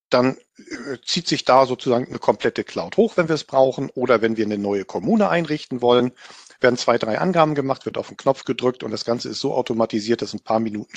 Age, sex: 50-69, male